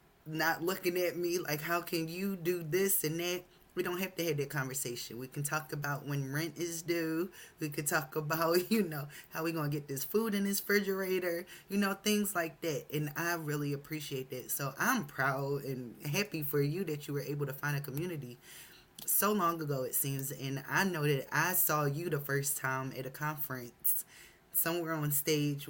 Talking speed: 205 wpm